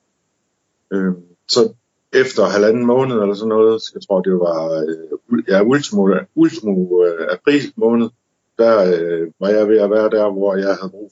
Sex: male